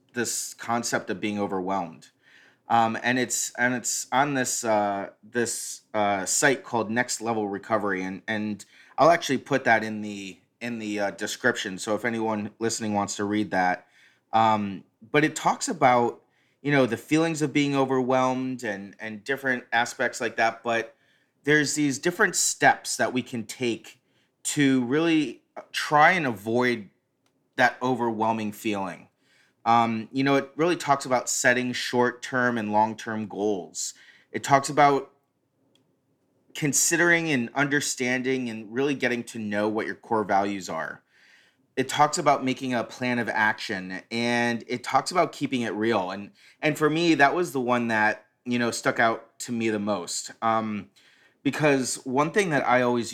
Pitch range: 110-135 Hz